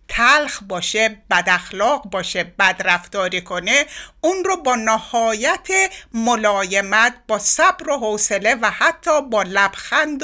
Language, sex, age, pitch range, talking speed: Persian, female, 60-79, 210-285 Hz, 115 wpm